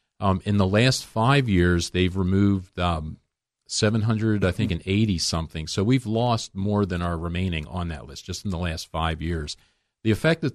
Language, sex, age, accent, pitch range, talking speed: English, male, 40-59, American, 85-110 Hz, 190 wpm